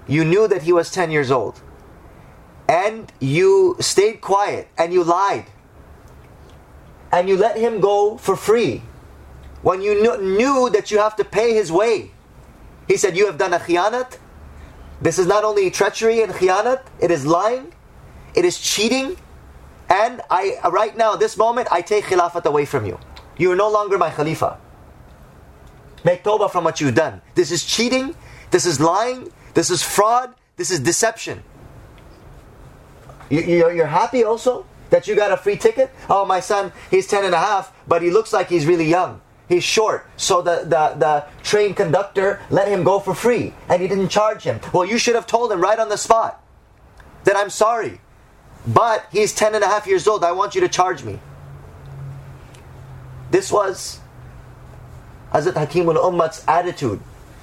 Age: 30-49